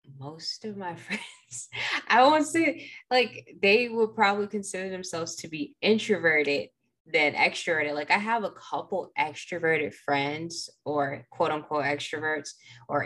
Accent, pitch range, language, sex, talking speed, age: American, 150-230 Hz, English, female, 140 wpm, 10-29